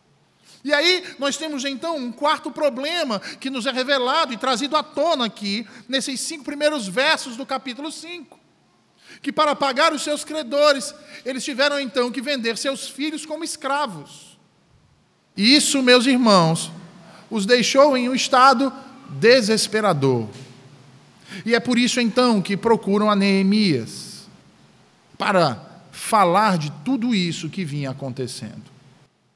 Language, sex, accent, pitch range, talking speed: Portuguese, male, Brazilian, 195-265 Hz, 135 wpm